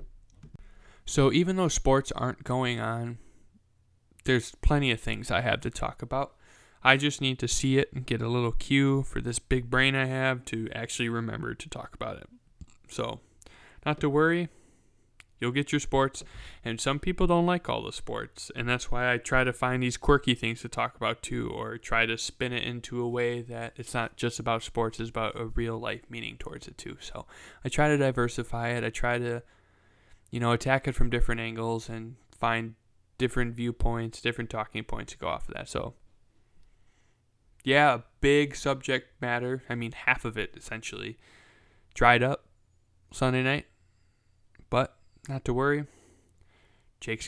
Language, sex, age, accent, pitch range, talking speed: English, male, 10-29, American, 105-130 Hz, 180 wpm